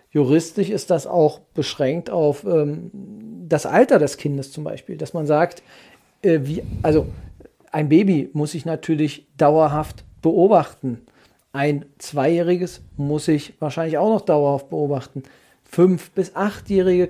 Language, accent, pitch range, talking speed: German, German, 150-170 Hz, 135 wpm